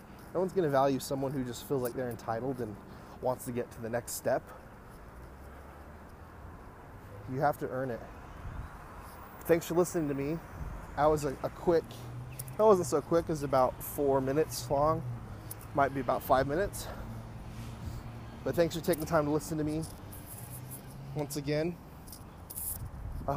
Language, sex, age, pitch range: English, male, 20-39, 100-140 Hz